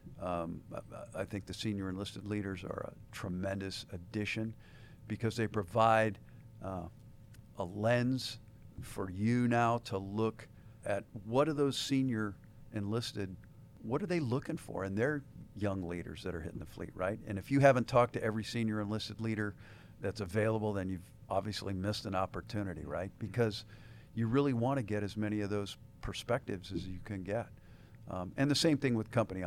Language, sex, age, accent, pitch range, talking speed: English, male, 50-69, American, 100-115 Hz, 170 wpm